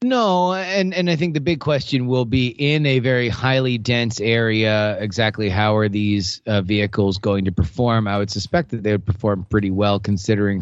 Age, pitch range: 30-49, 110-135 Hz